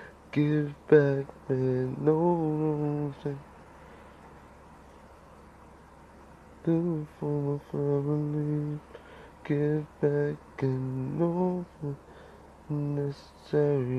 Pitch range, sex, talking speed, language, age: 125-145 Hz, male, 60 wpm, English, 30-49